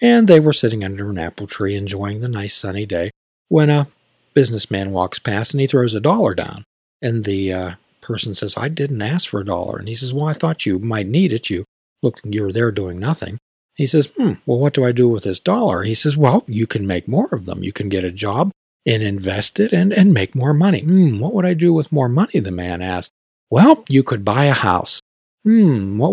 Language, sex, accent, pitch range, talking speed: English, male, American, 105-175 Hz, 235 wpm